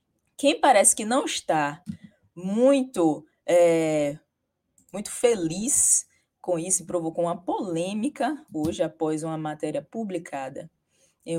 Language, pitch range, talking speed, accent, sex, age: Portuguese, 165-230 Hz, 110 wpm, Brazilian, female, 20-39